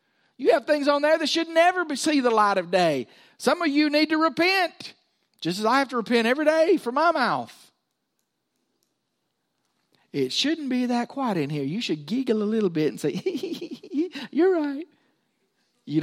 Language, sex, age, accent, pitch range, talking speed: English, male, 50-69, American, 210-315 Hz, 185 wpm